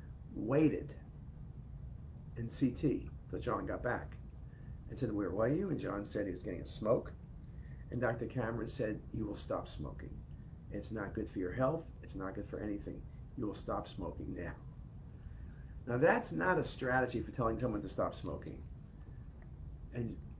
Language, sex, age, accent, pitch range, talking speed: English, male, 50-69, American, 105-140 Hz, 165 wpm